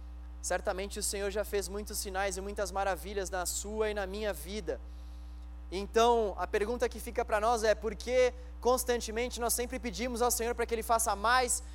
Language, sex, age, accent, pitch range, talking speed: Portuguese, male, 20-39, Brazilian, 200-260 Hz, 185 wpm